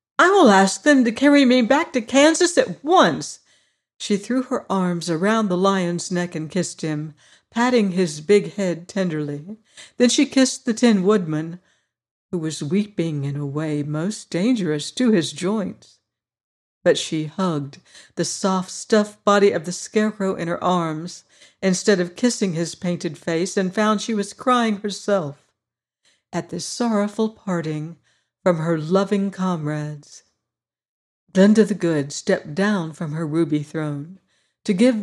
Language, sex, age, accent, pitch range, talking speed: English, female, 60-79, American, 165-215 Hz, 150 wpm